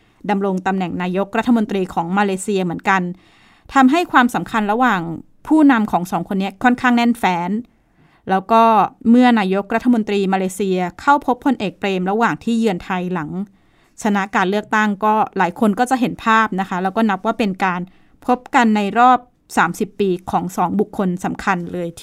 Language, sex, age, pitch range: Thai, female, 20-39, 190-230 Hz